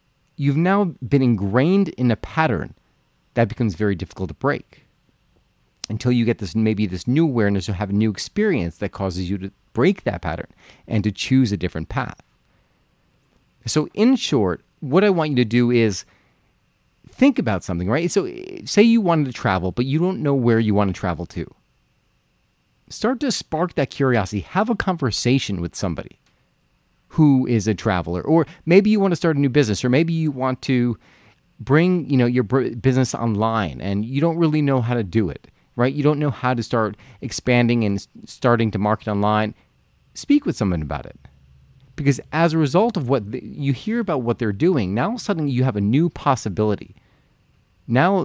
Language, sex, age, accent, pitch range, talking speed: English, male, 40-59, American, 105-150 Hz, 190 wpm